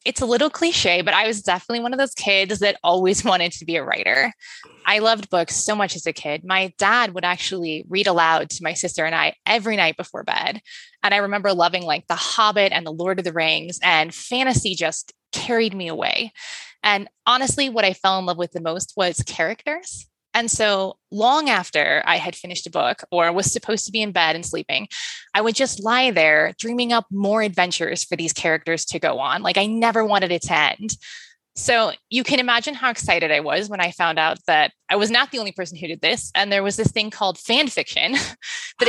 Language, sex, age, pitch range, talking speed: English, female, 20-39, 175-230 Hz, 220 wpm